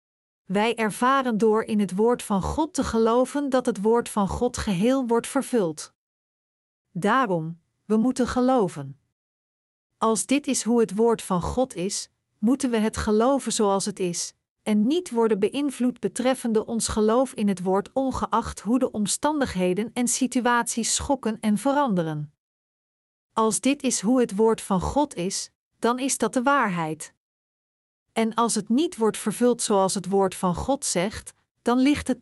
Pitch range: 200-250 Hz